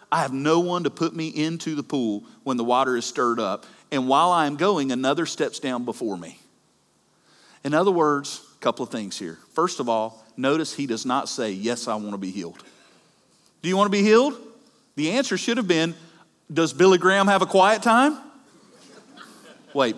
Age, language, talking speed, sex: 40-59, English, 195 wpm, male